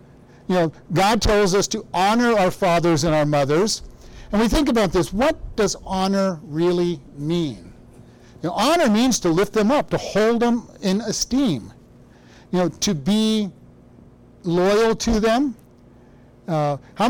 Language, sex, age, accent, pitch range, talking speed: English, male, 50-69, American, 165-230 Hz, 155 wpm